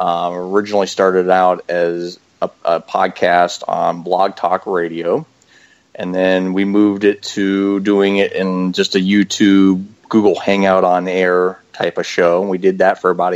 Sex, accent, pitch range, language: male, American, 90-100 Hz, English